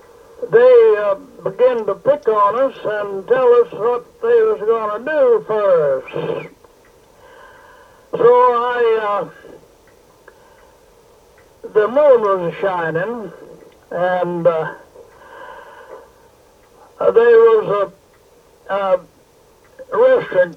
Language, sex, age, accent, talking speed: English, male, 60-79, American, 95 wpm